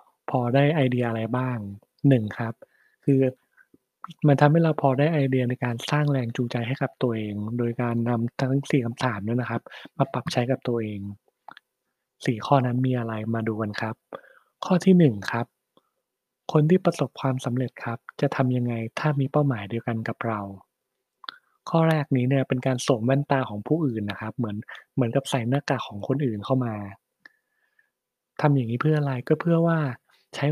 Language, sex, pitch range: Thai, male, 115-145 Hz